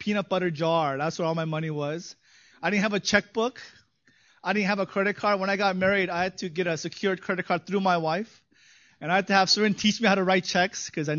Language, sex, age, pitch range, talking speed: English, male, 20-39, 155-195 Hz, 265 wpm